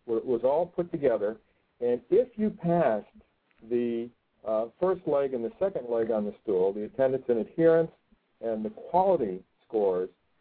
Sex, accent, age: male, American, 50-69